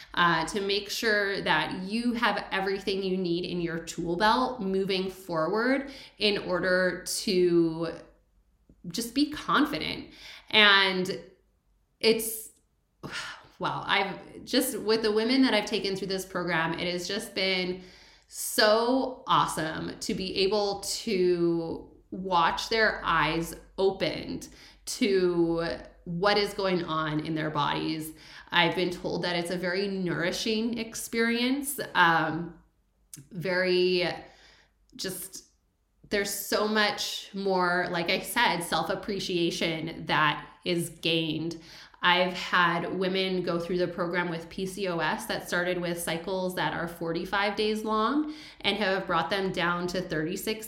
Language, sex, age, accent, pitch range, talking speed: English, female, 20-39, American, 170-205 Hz, 125 wpm